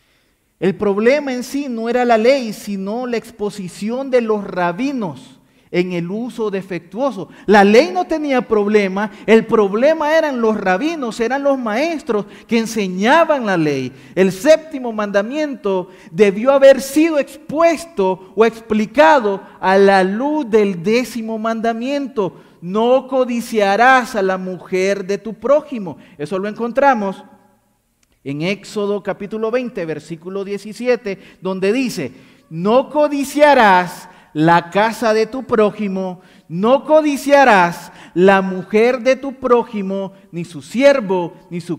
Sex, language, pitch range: male, Spanish, 190-260 Hz